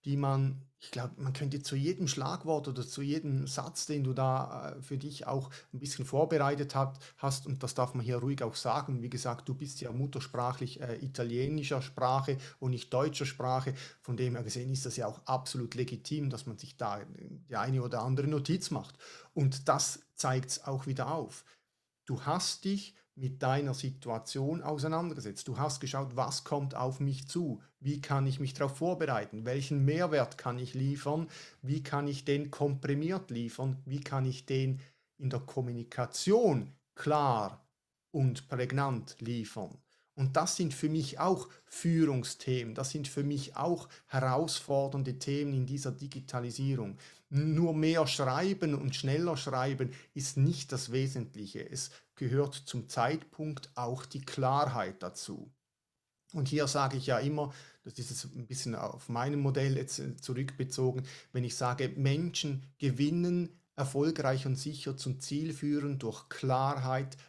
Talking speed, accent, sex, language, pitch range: 160 wpm, German, male, German, 130-145 Hz